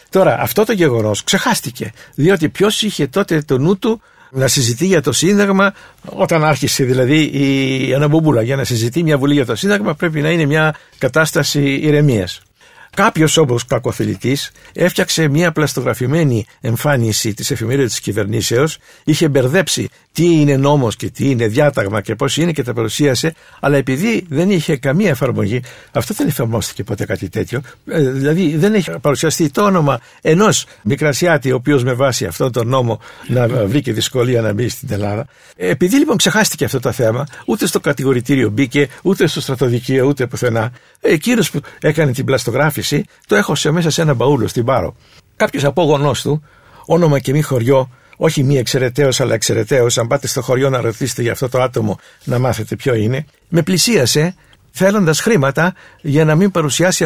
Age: 60-79